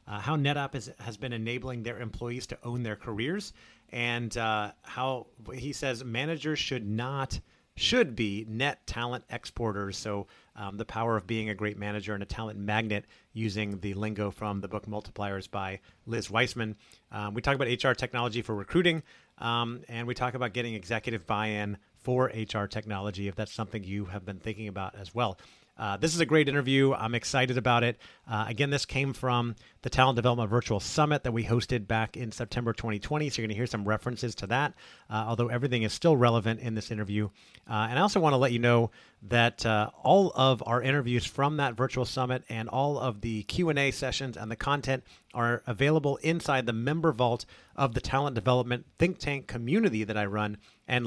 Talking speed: 195 wpm